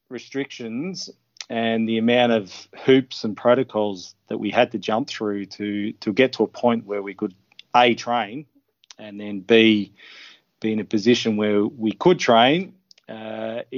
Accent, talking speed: Australian, 160 wpm